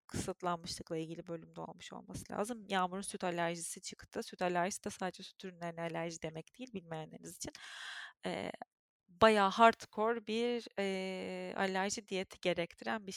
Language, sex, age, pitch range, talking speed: Turkish, female, 30-49, 180-225 Hz, 135 wpm